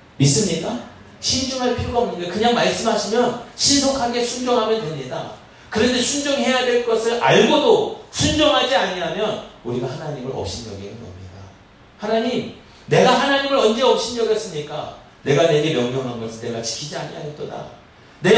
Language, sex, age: Korean, male, 40-59